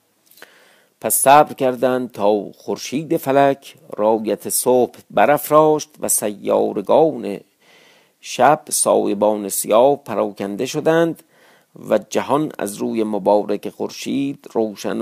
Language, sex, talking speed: Persian, male, 90 wpm